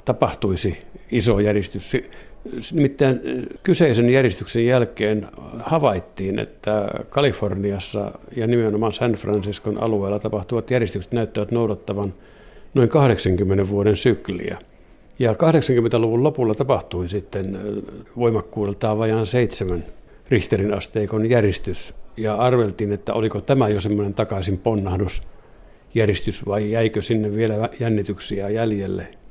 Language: Finnish